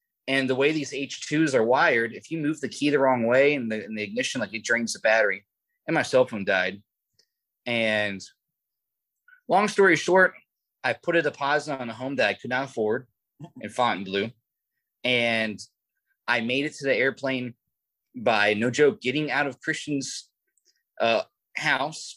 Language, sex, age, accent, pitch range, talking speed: English, male, 20-39, American, 110-145 Hz, 170 wpm